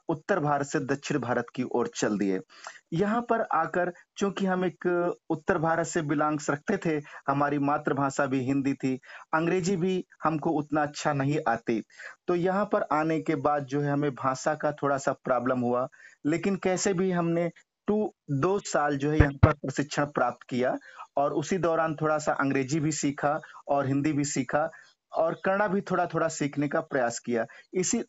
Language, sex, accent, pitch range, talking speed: Hindi, male, native, 145-170 Hz, 180 wpm